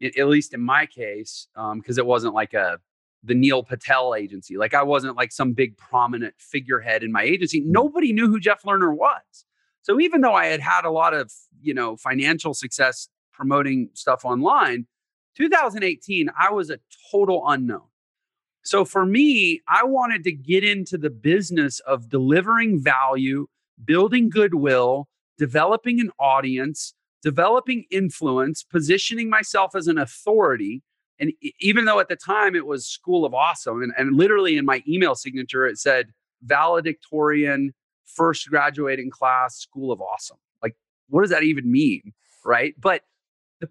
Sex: male